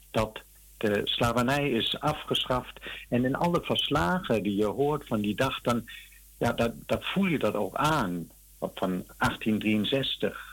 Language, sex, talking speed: Dutch, male, 150 wpm